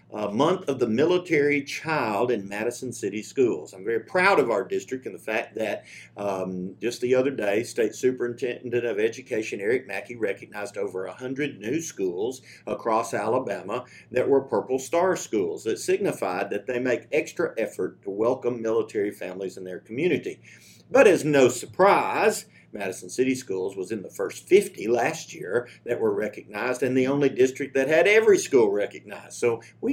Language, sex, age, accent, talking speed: English, male, 50-69, American, 170 wpm